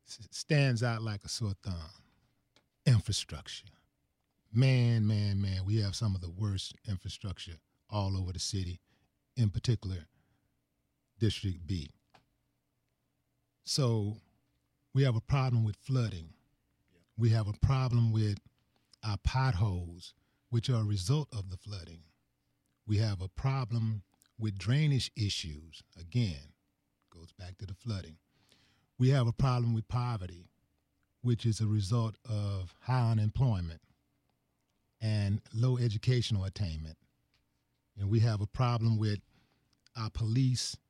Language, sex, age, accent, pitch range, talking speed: English, male, 40-59, American, 95-120 Hz, 125 wpm